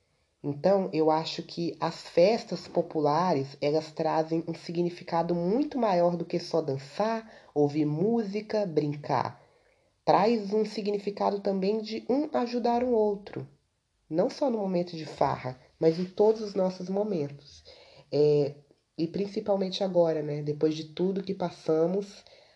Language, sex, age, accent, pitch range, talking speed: Portuguese, female, 20-39, Brazilian, 155-190 Hz, 135 wpm